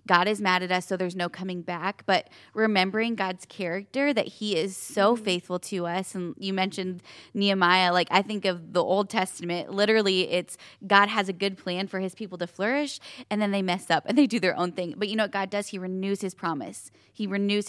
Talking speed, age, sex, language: 225 wpm, 20-39, female, English